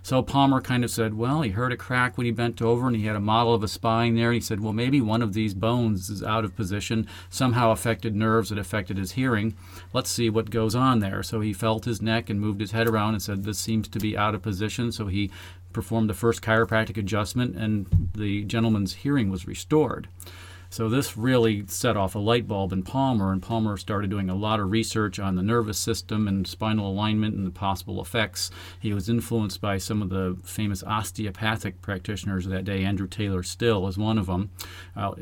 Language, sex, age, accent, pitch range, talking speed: English, male, 40-59, American, 95-115 Hz, 220 wpm